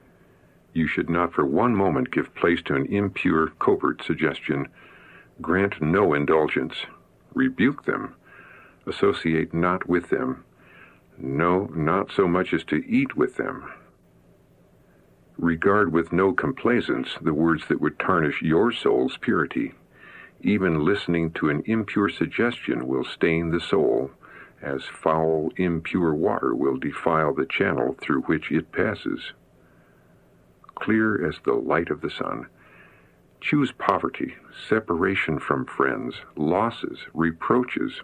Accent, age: American, 60-79